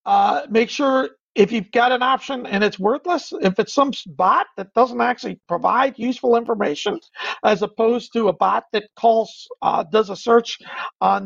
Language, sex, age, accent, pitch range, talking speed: English, male, 50-69, American, 215-260 Hz, 175 wpm